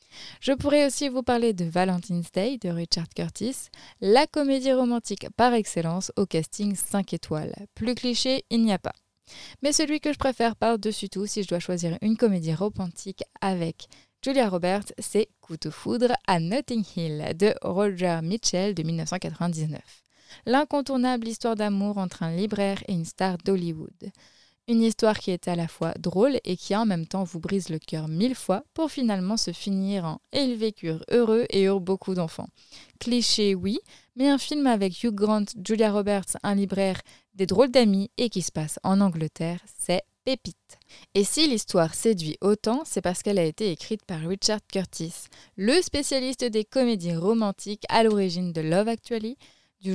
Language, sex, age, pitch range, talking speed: French, female, 20-39, 175-230 Hz, 175 wpm